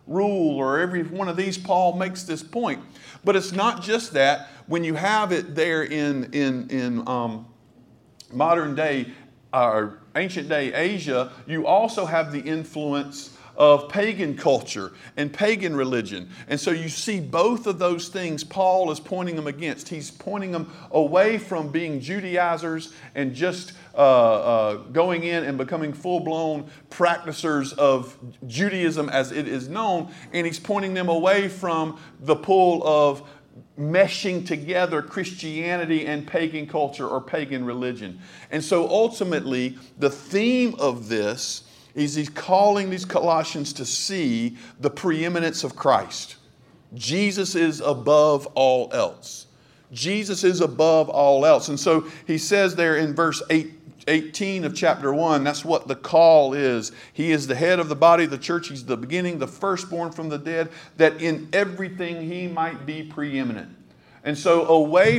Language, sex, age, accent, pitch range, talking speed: English, male, 50-69, American, 140-180 Hz, 155 wpm